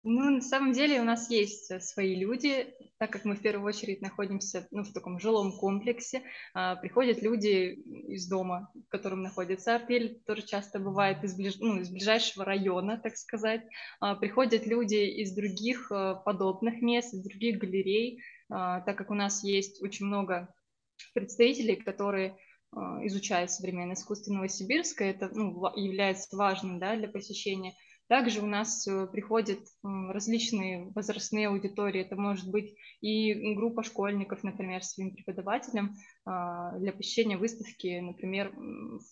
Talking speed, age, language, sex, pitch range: 140 wpm, 20-39, Russian, female, 195-225 Hz